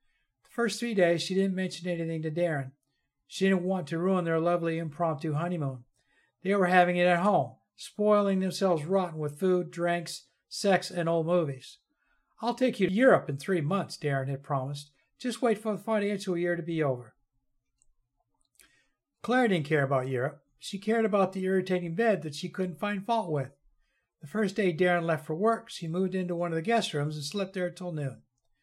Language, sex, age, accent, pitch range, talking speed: English, male, 60-79, American, 145-190 Hz, 190 wpm